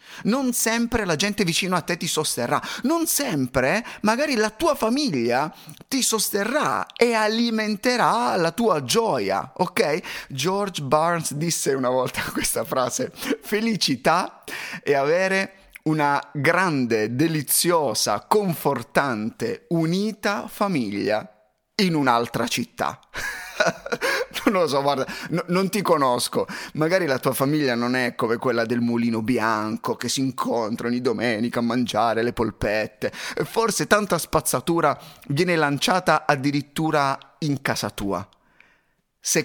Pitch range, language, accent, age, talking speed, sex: 120-185 Hz, Italian, native, 30-49, 120 wpm, male